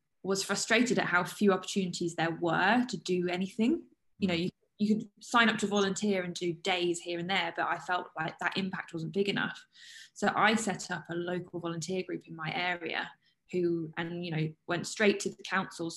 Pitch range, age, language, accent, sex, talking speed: 175-205 Hz, 10-29, English, British, female, 205 wpm